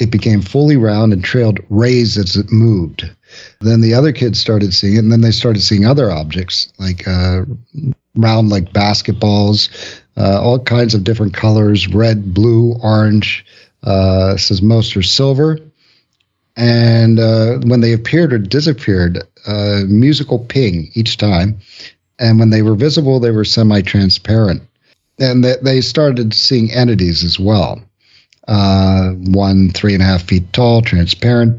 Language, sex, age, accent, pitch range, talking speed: English, male, 50-69, American, 100-120 Hz, 150 wpm